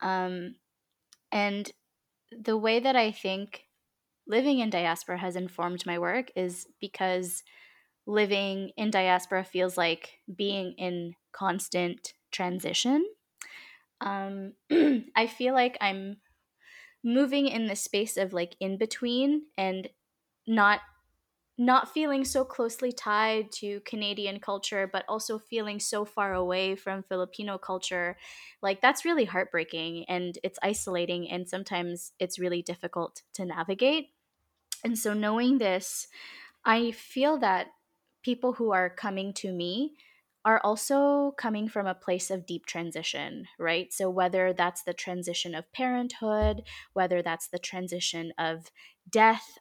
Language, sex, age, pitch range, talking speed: English, female, 10-29, 180-230 Hz, 130 wpm